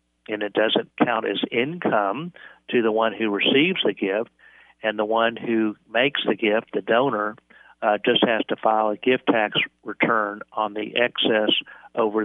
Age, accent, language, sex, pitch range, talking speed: 50-69, American, English, male, 105-115 Hz, 170 wpm